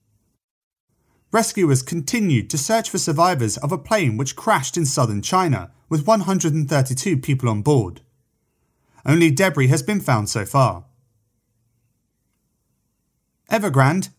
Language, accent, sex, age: English, British, male, 30-49